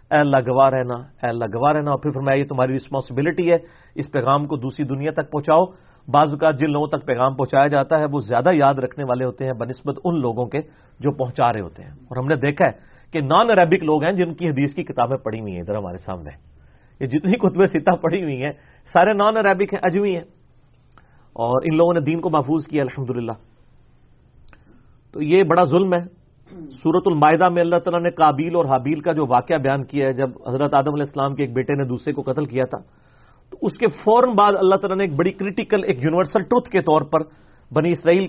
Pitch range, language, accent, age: 130-175 Hz, English, Indian, 40-59